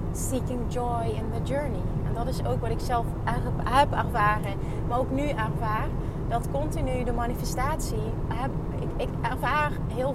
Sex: female